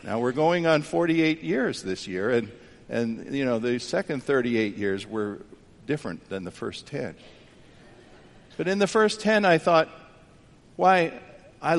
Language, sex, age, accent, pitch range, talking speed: English, male, 50-69, American, 115-190 Hz, 160 wpm